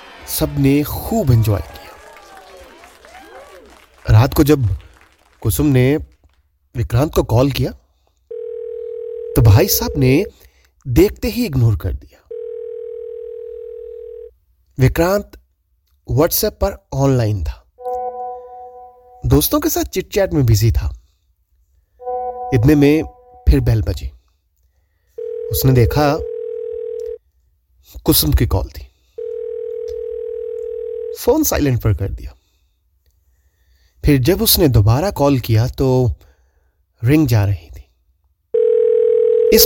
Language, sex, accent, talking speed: Hindi, male, native, 95 wpm